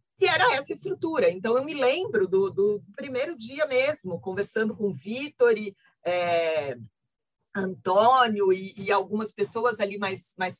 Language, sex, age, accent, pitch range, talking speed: Portuguese, female, 40-59, Brazilian, 190-250 Hz, 155 wpm